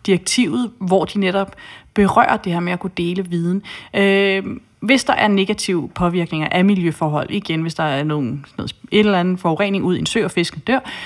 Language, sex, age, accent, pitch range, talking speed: Danish, female, 30-49, native, 180-220 Hz, 205 wpm